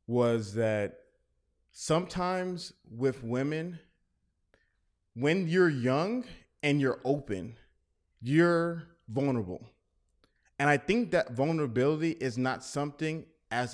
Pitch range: 130-170 Hz